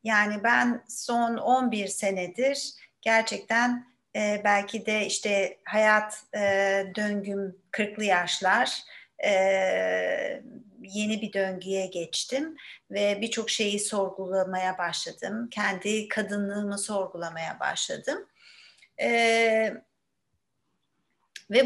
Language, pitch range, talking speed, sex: Turkish, 200-245 Hz, 75 wpm, female